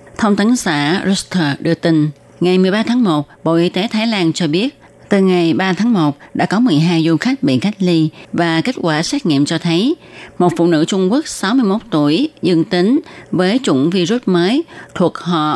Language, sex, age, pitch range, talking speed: Vietnamese, female, 20-39, 150-195 Hz, 200 wpm